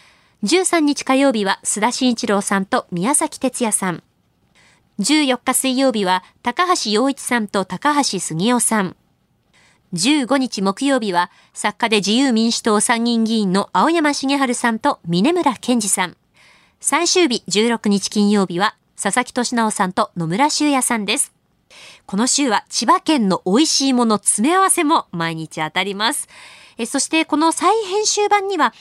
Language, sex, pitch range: Japanese, female, 195-280 Hz